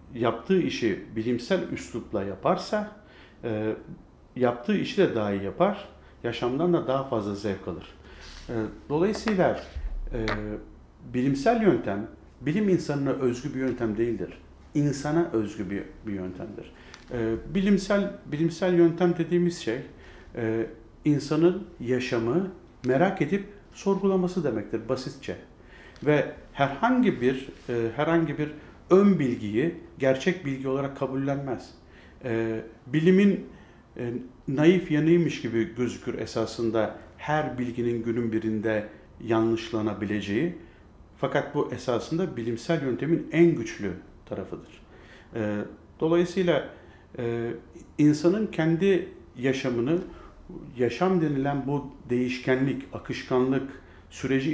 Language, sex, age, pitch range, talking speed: Turkish, male, 50-69, 110-165 Hz, 90 wpm